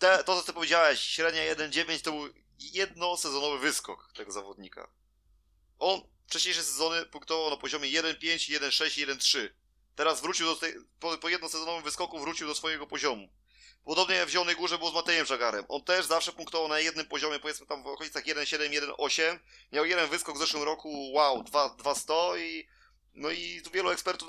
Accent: native